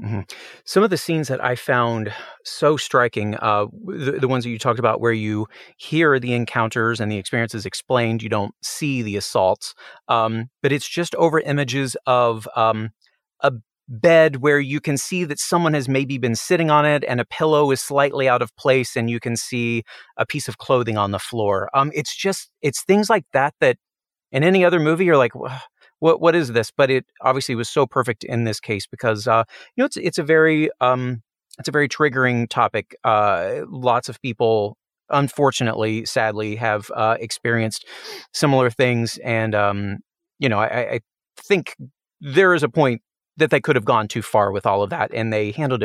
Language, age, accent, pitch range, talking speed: English, 30-49, American, 110-145 Hz, 200 wpm